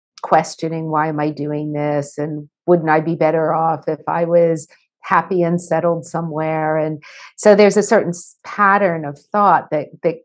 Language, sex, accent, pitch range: English, female, American, 160-205 Hz